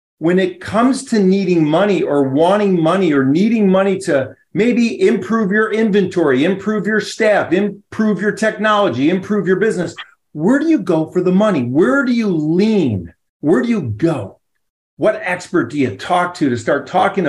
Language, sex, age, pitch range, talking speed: English, male, 40-59, 150-200 Hz, 175 wpm